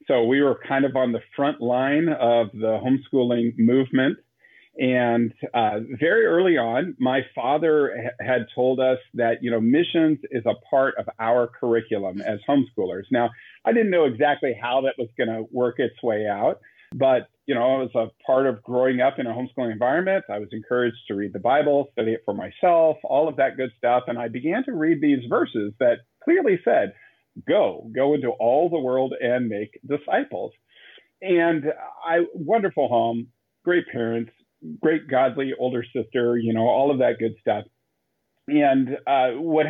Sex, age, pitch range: male, 50-69, 120-150 Hz